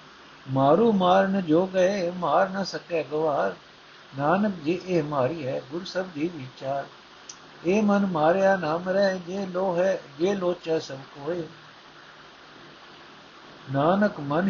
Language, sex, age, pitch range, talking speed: Punjabi, male, 60-79, 135-175 Hz, 130 wpm